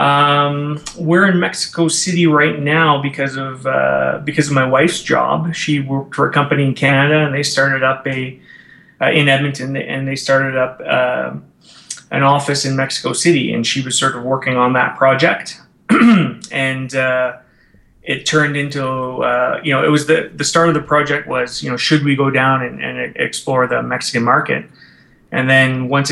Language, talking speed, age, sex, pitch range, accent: English, 185 wpm, 20-39, male, 130-150 Hz, American